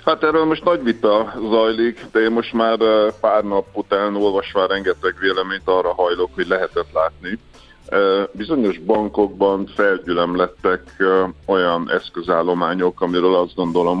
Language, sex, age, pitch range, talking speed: Hungarian, male, 50-69, 90-120 Hz, 125 wpm